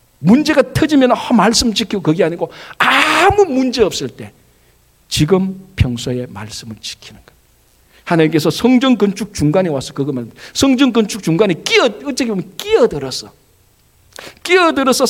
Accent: native